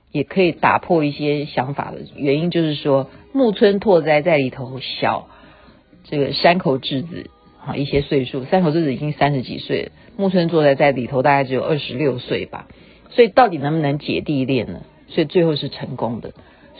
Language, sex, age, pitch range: Chinese, female, 50-69, 135-185 Hz